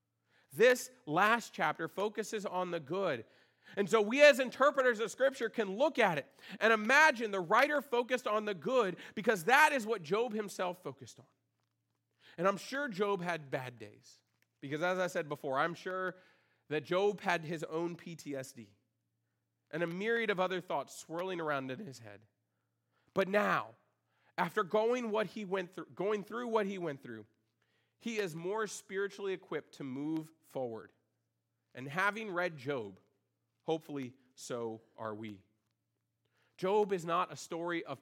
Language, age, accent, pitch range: English, 40-59, American, 130-200 Hz